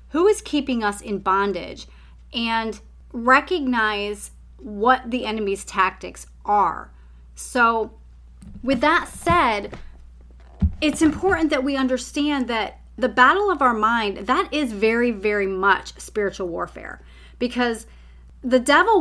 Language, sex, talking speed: English, female, 120 wpm